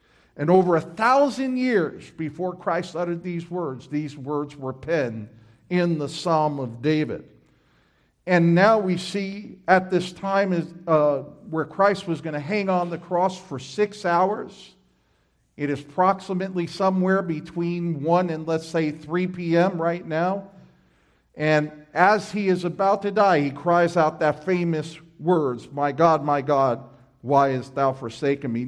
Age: 50-69